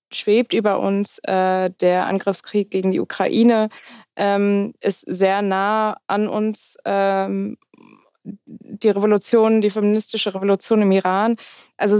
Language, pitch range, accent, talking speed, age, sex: German, 190-220 Hz, German, 120 wpm, 20-39, female